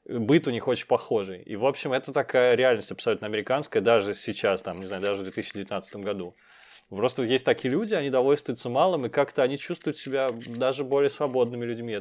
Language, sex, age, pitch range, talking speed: Russian, male, 20-39, 105-145 Hz, 195 wpm